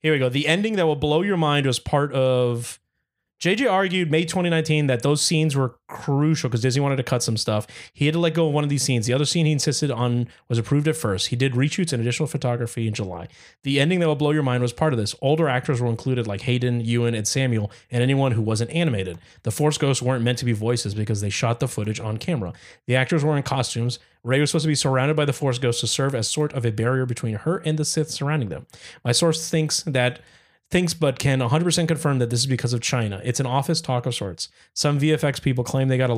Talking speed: 255 wpm